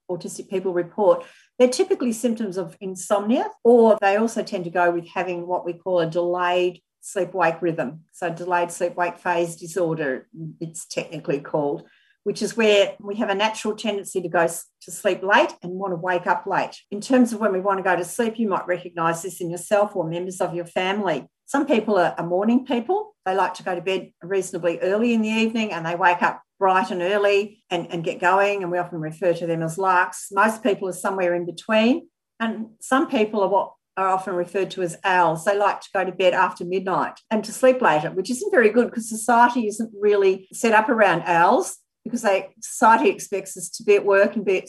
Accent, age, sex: Australian, 50-69, female